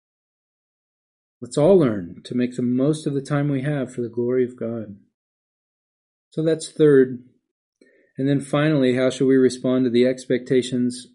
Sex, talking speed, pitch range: male, 160 wpm, 125-140 Hz